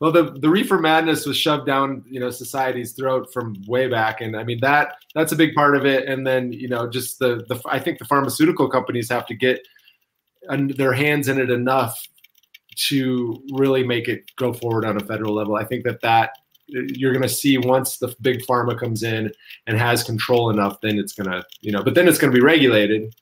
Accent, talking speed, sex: American, 220 wpm, male